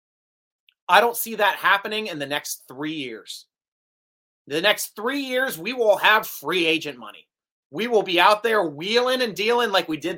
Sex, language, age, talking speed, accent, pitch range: male, English, 30-49, 185 wpm, American, 155-230 Hz